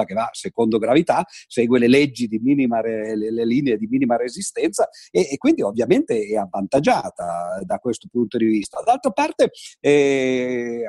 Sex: male